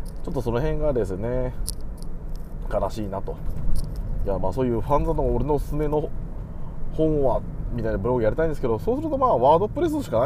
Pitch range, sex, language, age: 100-135 Hz, male, Japanese, 20-39